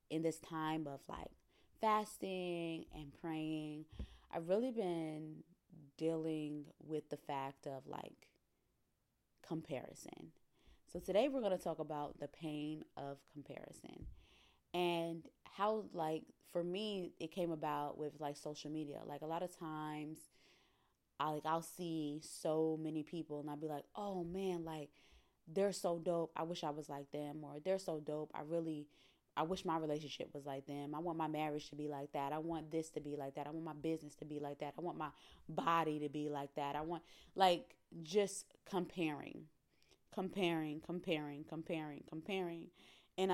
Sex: female